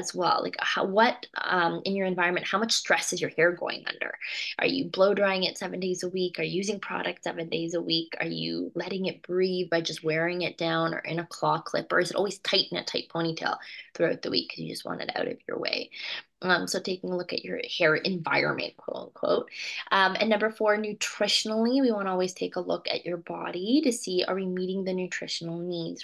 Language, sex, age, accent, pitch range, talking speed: English, female, 20-39, American, 170-210 Hz, 235 wpm